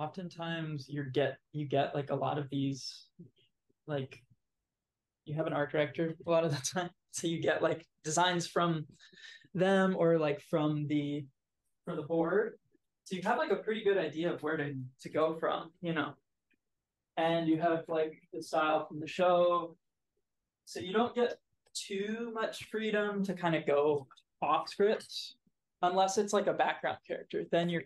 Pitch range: 150-175 Hz